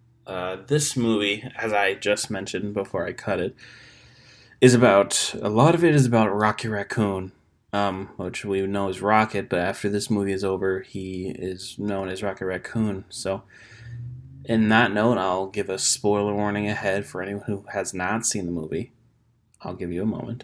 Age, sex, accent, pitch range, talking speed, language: 20-39, male, American, 95-120 Hz, 180 wpm, English